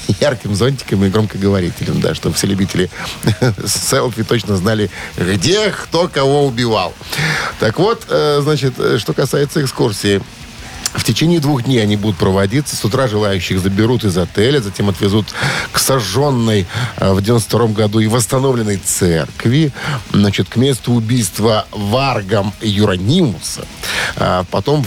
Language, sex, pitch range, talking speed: Russian, male, 100-135 Hz, 130 wpm